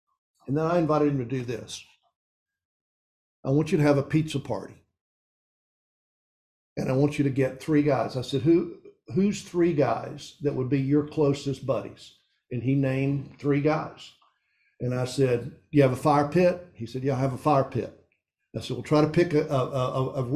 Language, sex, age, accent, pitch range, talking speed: English, male, 50-69, American, 130-165 Hz, 200 wpm